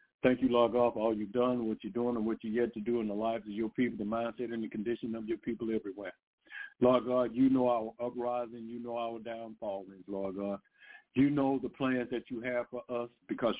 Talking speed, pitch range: 240 wpm, 115-165 Hz